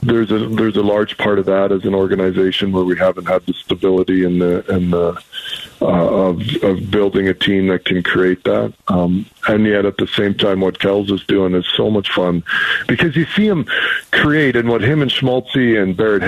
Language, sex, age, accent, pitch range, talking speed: English, male, 50-69, American, 95-110 Hz, 225 wpm